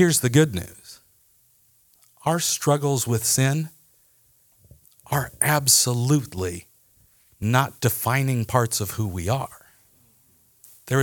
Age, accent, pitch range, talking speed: 50-69, American, 110-145 Hz, 100 wpm